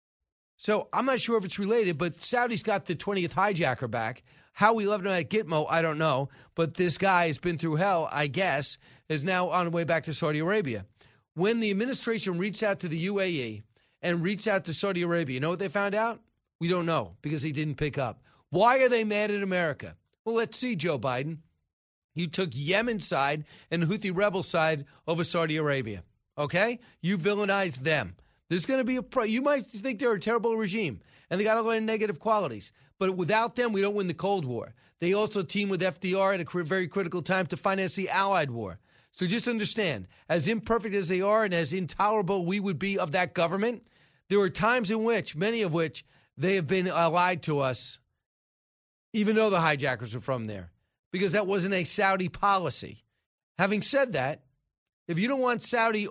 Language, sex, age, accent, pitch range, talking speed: English, male, 40-59, American, 155-210 Hz, 205 wpm